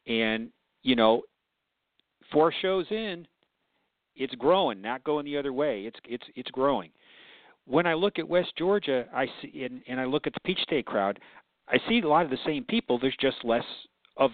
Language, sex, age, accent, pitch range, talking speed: English, male, 50-69, American, 115-150 Hz, 195 wpm